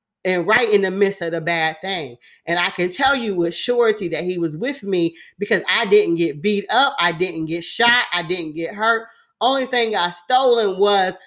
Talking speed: 215 wpm